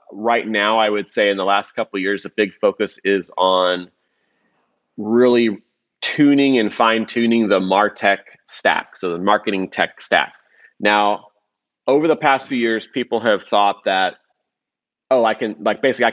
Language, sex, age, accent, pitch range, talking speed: English, male, 30-49, American, 100-125 Hz, 165 wpm